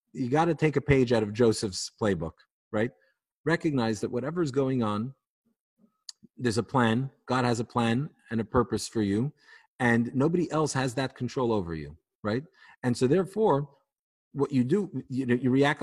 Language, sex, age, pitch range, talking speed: English, male, 40-59, 115-145 Hz, 170 wpm